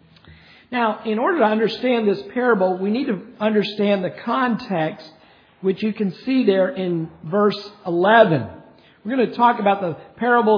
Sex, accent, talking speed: male, American, 160 wpm